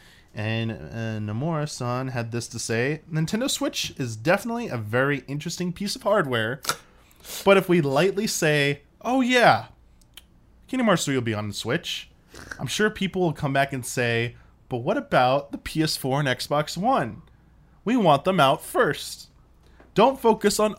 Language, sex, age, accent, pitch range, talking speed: English, male, 20-39, American, 110-165 Hz, 160 wpm